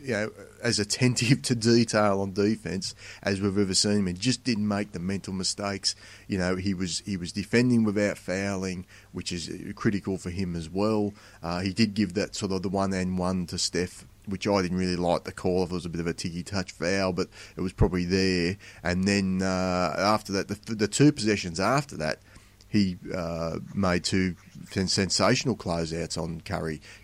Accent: Australian